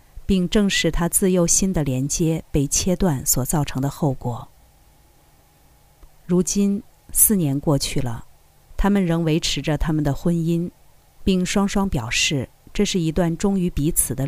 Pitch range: 140-190 Hz